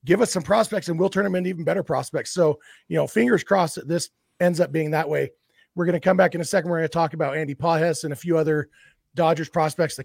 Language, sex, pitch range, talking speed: English, male, 155-190 Hz, 275 wpm